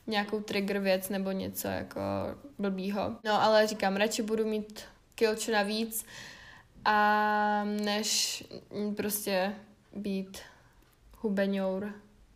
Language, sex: Czech, female